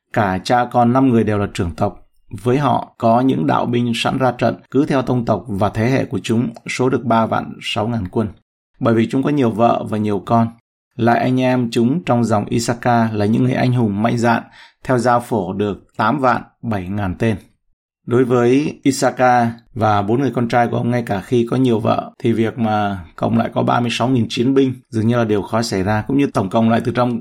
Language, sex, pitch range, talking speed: Vietnamese, male, 110-125 Hz, 230 wpm